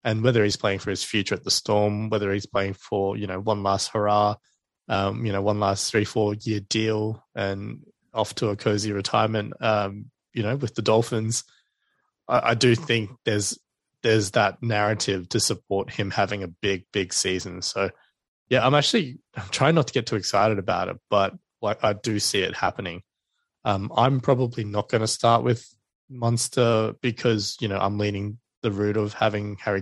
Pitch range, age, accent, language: 100-115 Hz, 20-39, Australian, English